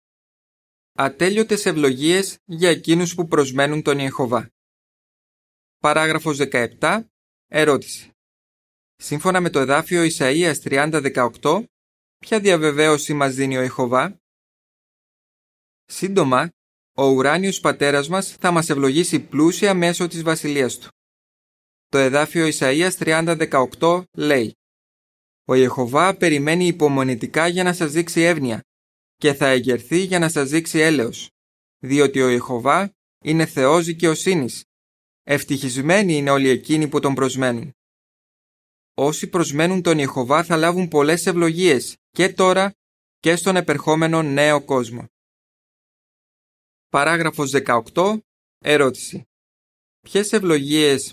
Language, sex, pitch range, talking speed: Greek, male, 135-170 Hz, 105 wpm